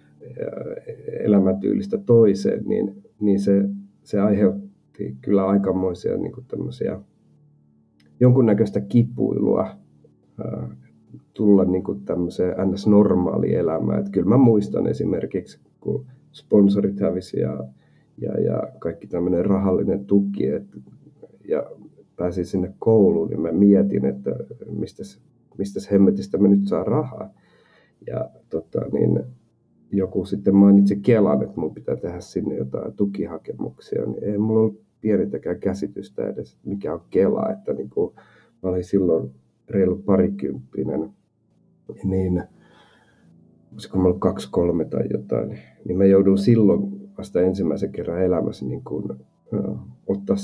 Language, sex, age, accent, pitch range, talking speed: Finnish, male, 50-69, native, 90-105 Hz, 120 wpm